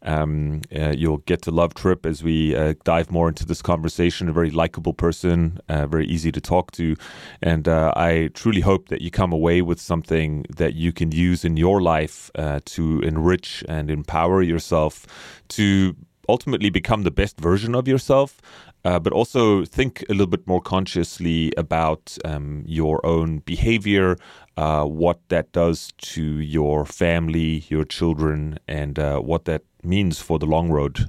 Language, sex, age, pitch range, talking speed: English, male, 30-49, 80-95 Hz, 170 wpm